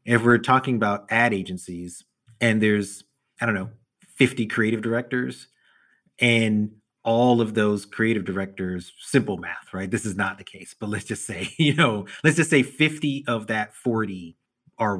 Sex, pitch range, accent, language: male, 95-120 Hz, American, English